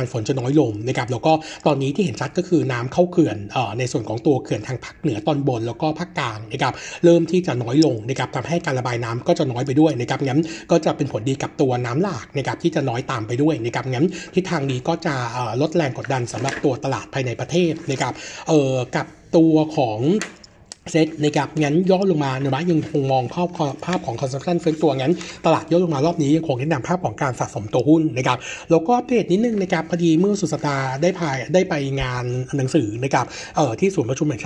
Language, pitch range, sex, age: Thai, 130-165 Hz, male, 60-79